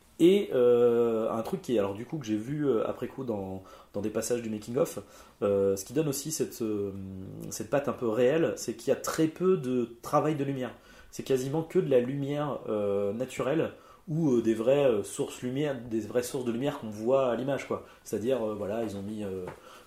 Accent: French